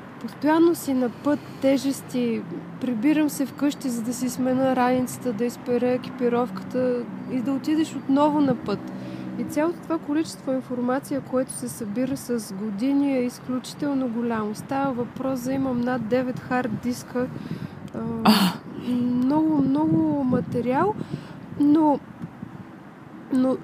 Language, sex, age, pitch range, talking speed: English, female, 20-39, 240-295 Hz, 120 wpm